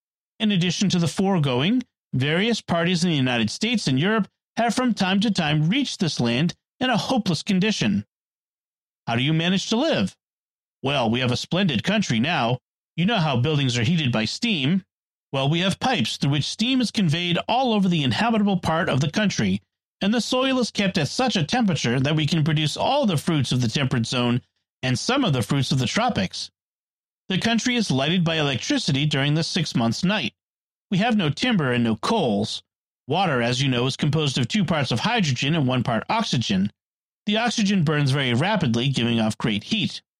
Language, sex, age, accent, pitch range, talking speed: English, male, 40-59, American, 135-205 Hz, 200 wpm